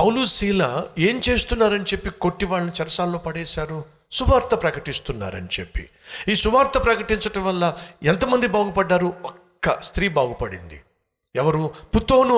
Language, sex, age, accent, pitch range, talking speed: Telugu, male, 50-69, native, 155-215 Hz, 105 wpm